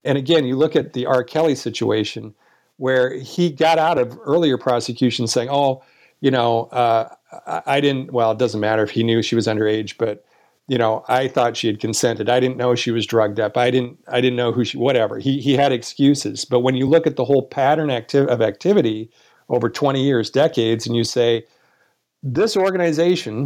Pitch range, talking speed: 115-140 Hz, 205 wpm